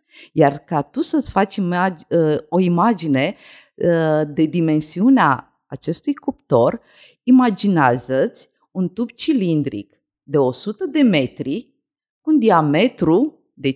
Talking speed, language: 100 wpm, Romanian